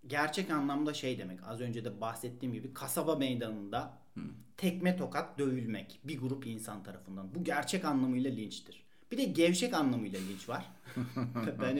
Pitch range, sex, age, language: 120-165 Hz, male, 40-59, Turkish